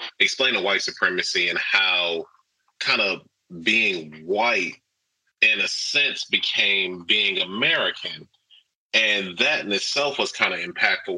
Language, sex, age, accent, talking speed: English, male, 30-49, American, 130 wpm